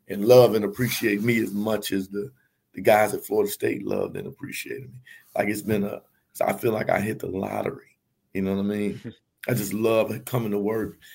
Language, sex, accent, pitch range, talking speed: English, male, American, 105-115 Hz, 215 wpm